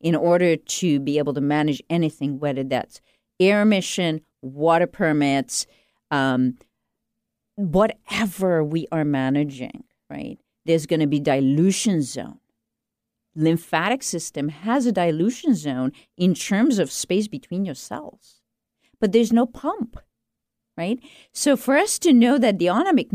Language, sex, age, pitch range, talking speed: English, female, 50-69, 165-265 Hz, 135 wpm